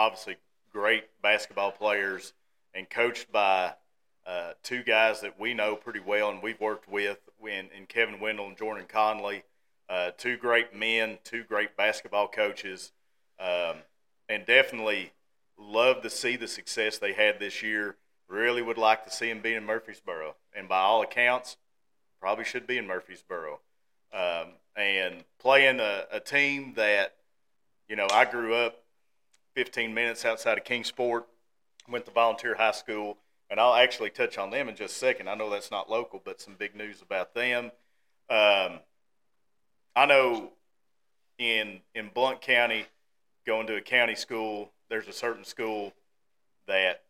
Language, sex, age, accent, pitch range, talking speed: English, male, 40-59, American, 105-120 Hz, 160 wpm